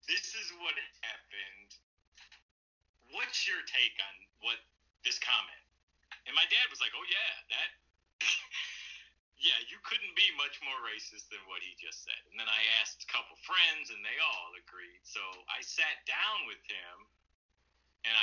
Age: 40-59